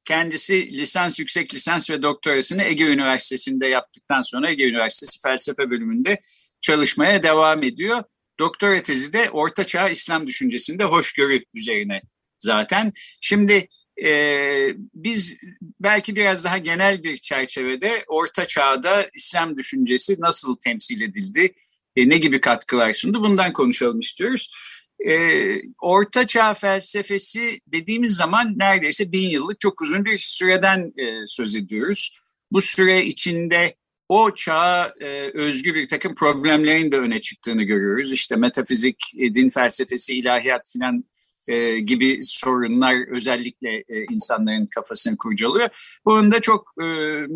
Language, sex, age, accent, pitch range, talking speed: Turkish, male, 50-69, native, 140-215 Hz, 125 wpm